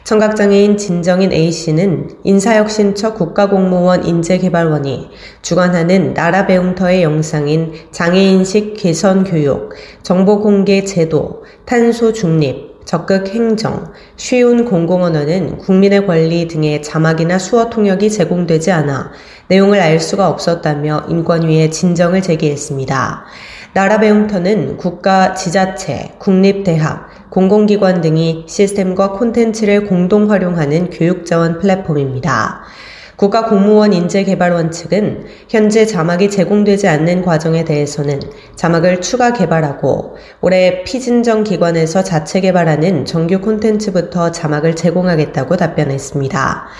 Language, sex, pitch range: Korean, female, 165-200 Hz